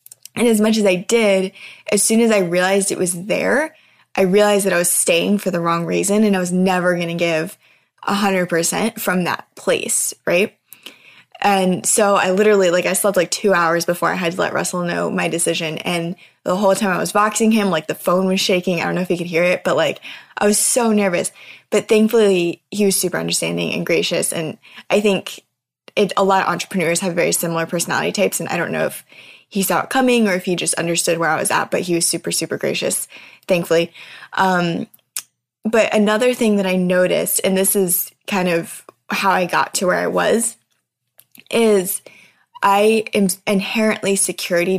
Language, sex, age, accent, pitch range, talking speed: English, female, 10-29, American, 175-205 Hz, 200 wpm